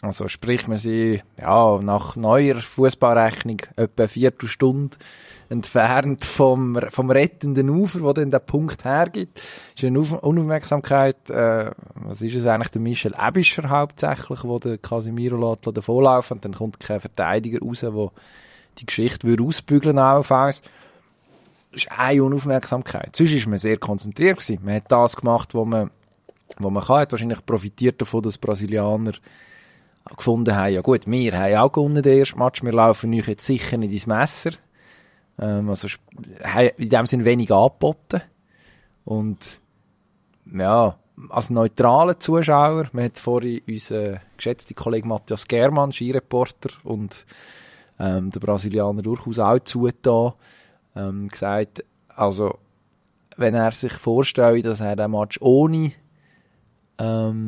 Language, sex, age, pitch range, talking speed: German, male, 20-39, 110-135 Hz, 145 wpm